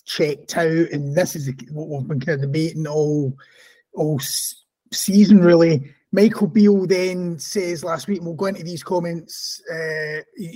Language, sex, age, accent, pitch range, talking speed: English, male, 30-49, British, 165-205 Hz, 160 wpm